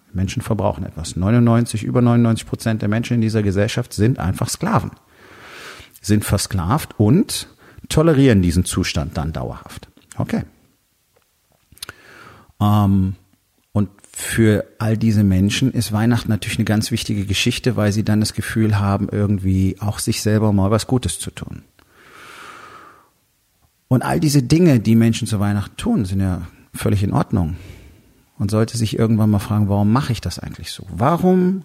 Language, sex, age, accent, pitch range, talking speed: German, male, 40-59, German, 100-120 Hz, 150 wpm